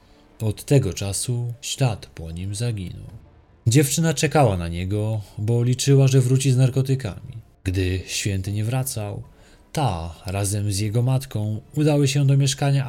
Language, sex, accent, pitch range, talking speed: Polish, male, native, 95-130 Hz, 140 wpm